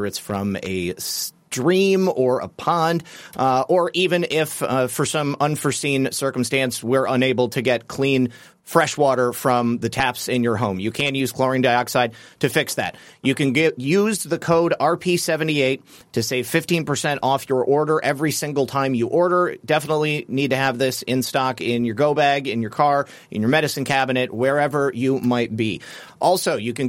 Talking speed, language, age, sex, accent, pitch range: 175 wpm, English, 30-49, male, American, 125-145 Hz